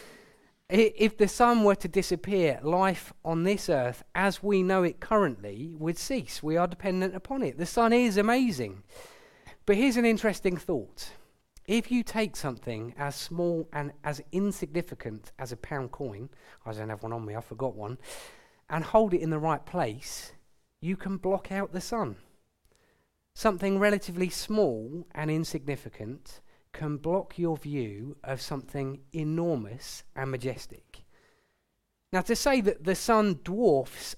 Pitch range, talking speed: 145-200 Hz, 155 wpm